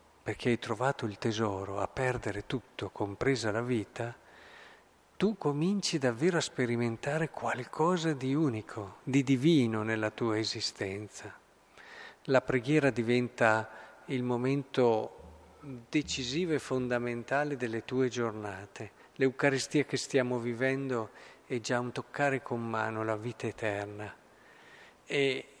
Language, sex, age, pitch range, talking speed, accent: Italian, male, 50-69, 115-140 Hz, 115 wpm, native